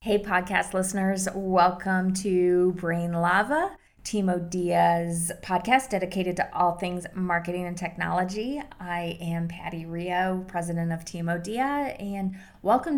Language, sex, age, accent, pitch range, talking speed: English, female, 20-39, American, 170-200 Hz, 125 wpm